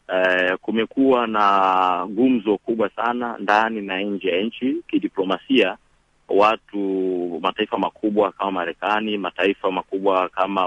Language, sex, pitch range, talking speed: Swahili, male, 90-105 Hz, 105 wpm